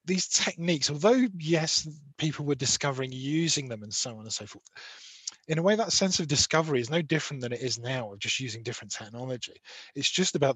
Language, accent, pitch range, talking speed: English, British, 130-170 Hz, 210 wpm